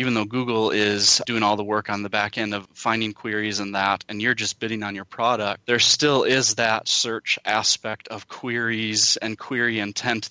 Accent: American